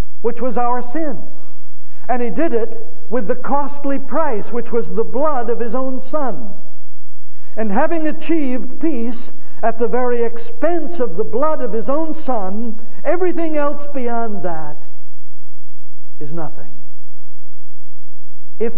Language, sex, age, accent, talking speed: English, male, 60-79, American, 135 wpm